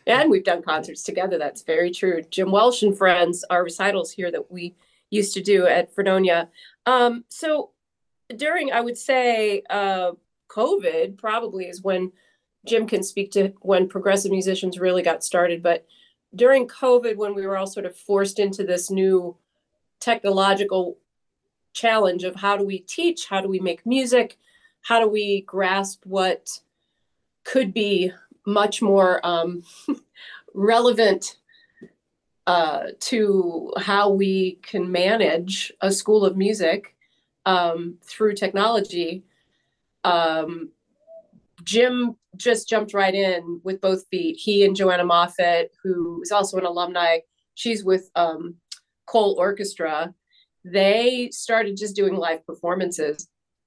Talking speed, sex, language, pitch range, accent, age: 135 wpm, female, English, 180-220 Hz, American, 30-49